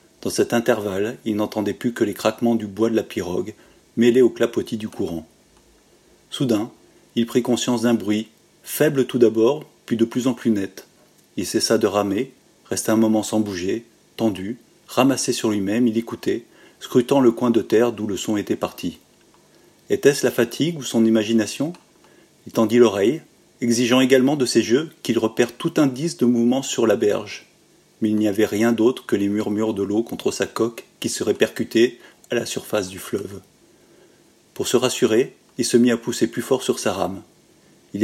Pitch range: 110-125 Hz